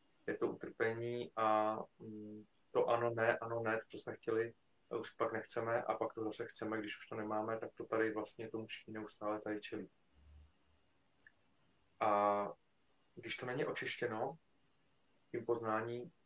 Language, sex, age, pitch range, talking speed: Czech, male, 20-39, 105-120 Hz, 150 wpm